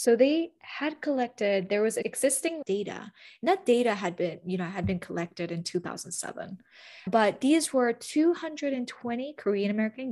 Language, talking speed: English, 150 wpm